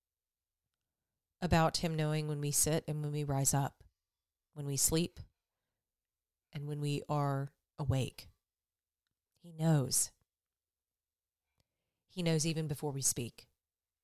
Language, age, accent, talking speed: English, 40-59, American, 115 wpm